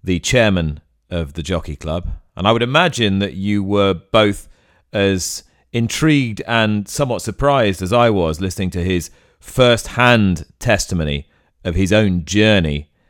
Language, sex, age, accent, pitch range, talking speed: English, male, 40-59, British, 90-115 Hz, 140 wpm